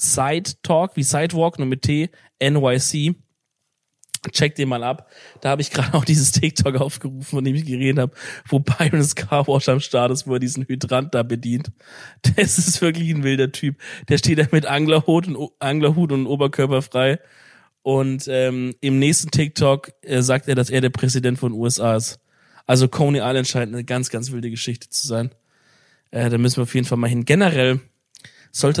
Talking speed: 185 wpm